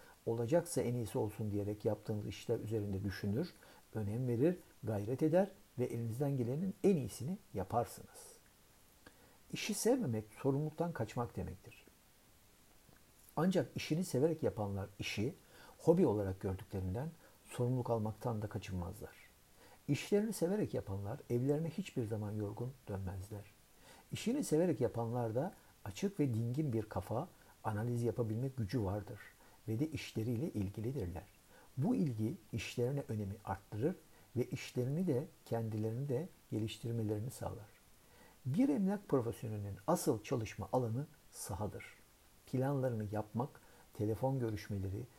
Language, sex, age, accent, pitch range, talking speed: Turkish, male, 60-79, native, 105-145 Hz, 110 wpm